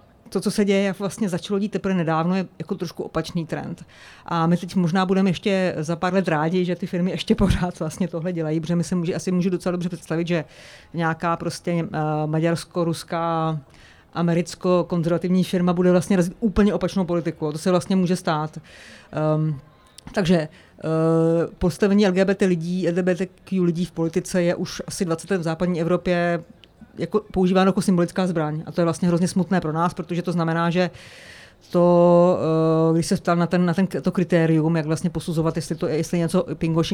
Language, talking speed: Czech, 180 wpm